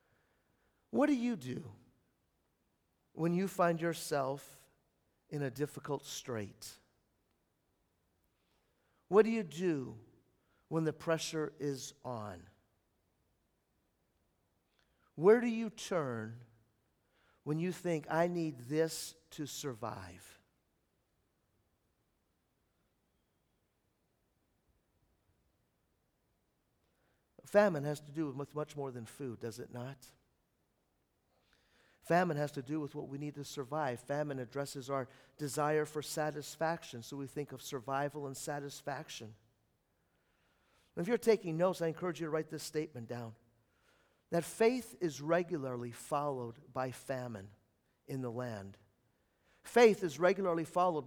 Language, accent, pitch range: English, American, 120-180 Hz